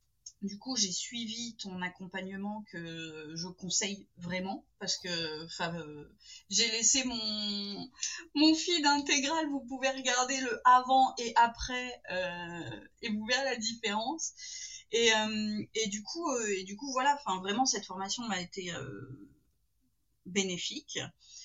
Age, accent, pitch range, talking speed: 30-49, French, 195-260 Hz, 135 wpm